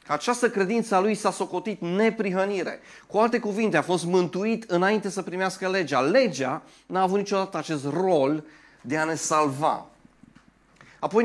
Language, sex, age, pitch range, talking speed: Romanian, male, 30-49, 140-185 Hz, 150 wpm